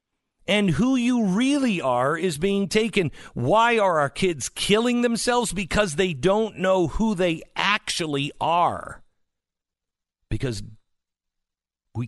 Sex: male